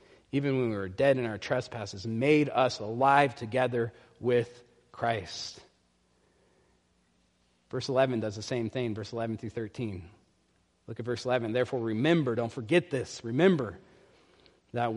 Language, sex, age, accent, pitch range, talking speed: English, male, 40-59, American, 105-150 Hz, 140 wpm